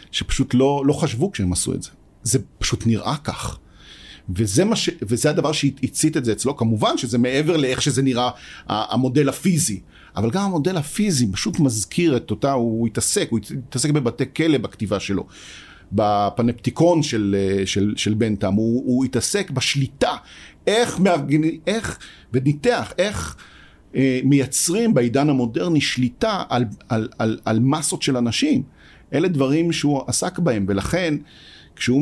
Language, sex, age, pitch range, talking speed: Hebrew, male, 50-69, 105-145 Hz, 145 wpm